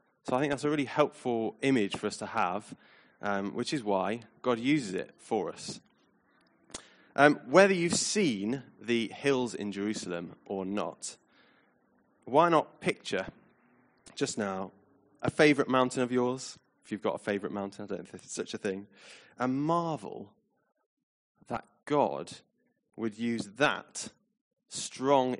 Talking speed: 150 wpm